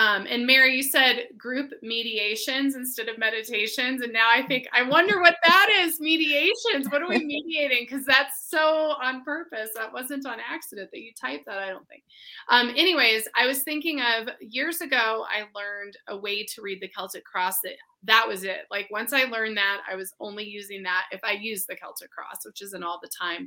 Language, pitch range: English, 195-275 Hz